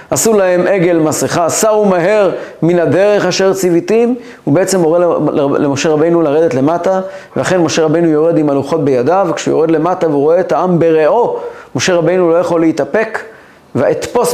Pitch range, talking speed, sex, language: 150-185 Hz, 155 wpm, male, Hebrew